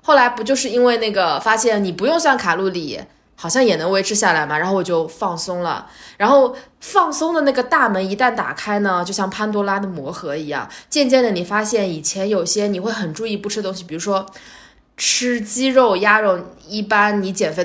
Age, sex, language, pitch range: 20-39, female, Chinese, 165-225 Hz